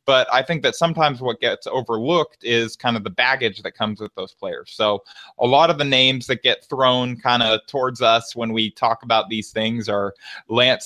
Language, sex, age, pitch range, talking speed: English, male, 20-39, 115-150 Hz, 215 wpm